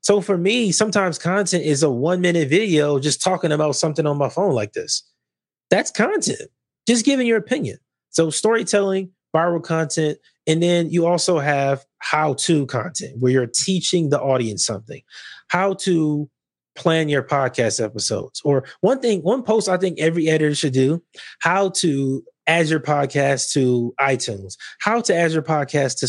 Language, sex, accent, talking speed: English, male, American, 165 wpm